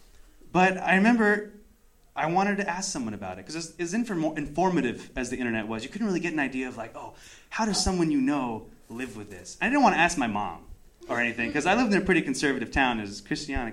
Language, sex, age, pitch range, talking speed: English, male, 20-39, 140-210 Hz, 240 wpm